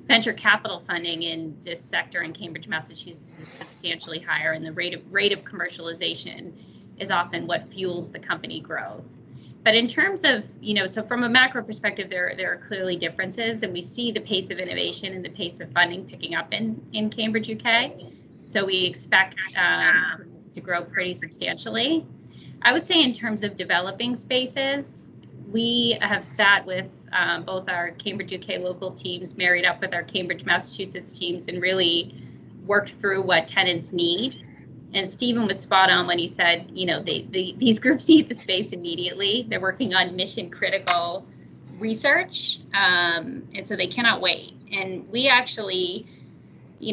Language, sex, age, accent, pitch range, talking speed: English, female, 20-39, American, 180-215 Hz, 170 wpm